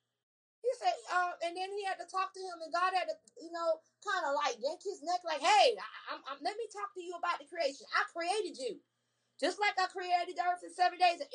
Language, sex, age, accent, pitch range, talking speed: English, female, 30-49, American, 275-360 Hz, 240 wpm